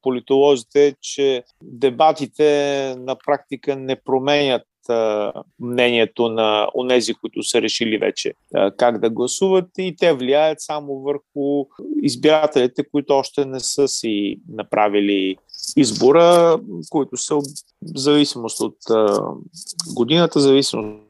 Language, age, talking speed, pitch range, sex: Bulgarian, 30-49, 105 wpm, 115-155 Hz, male